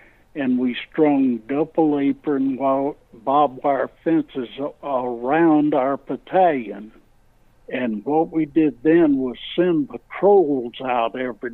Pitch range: 125-145 Hz